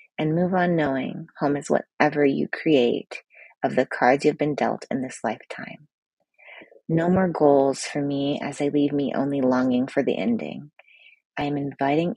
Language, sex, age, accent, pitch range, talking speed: English, female, 30-49, American, 145-190 Hz, 175 wpm